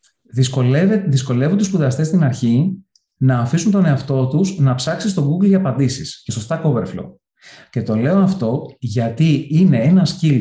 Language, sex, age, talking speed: Greek, male, 30-49, 160 wpm